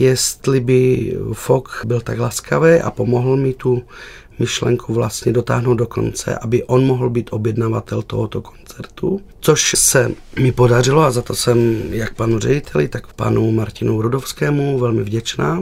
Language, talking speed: Czech, 150 wpm